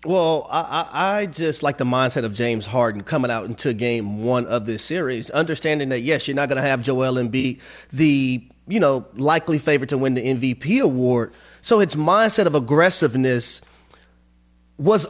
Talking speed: 185 wpm